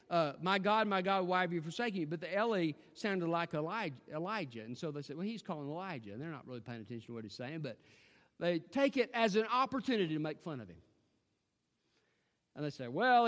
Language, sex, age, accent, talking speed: English, male, 50-69, American, 230 wpm